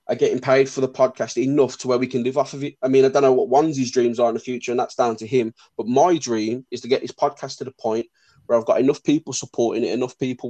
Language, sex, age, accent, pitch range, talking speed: English, male, 20-39, British, 120-150 Hz, 295 wpm